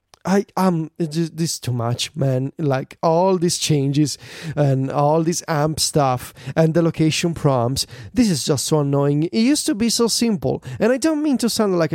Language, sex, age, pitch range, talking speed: English, male, 30-49, 140-185 Hz, 190 wpm